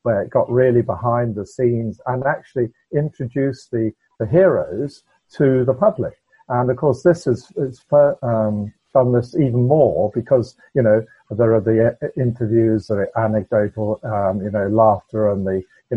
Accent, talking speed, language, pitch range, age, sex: British, 160 wpm, English, 105-130 Hz, 50-69, male